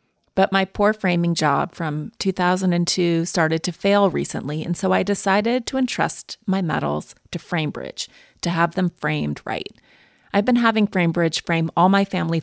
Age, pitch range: 30-49, 160-205 Hz